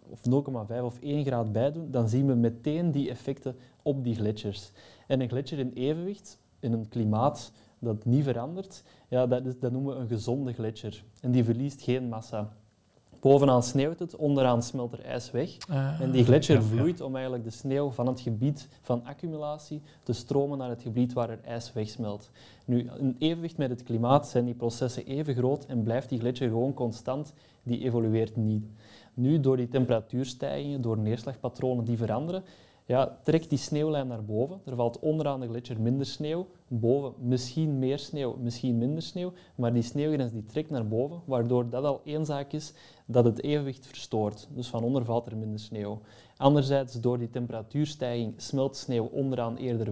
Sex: male